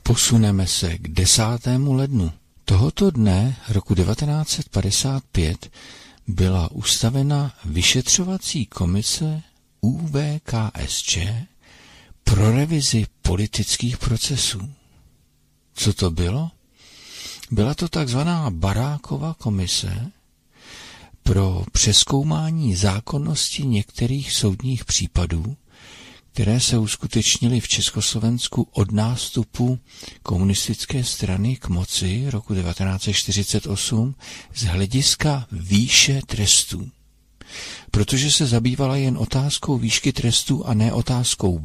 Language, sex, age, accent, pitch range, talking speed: Czech, male, 50-69, native, 95-130 Hz, 85 wpm